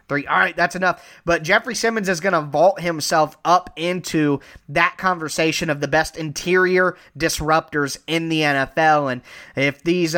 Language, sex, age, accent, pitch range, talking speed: English, male, 20-39, American, 155-185 Hz, 165 wpm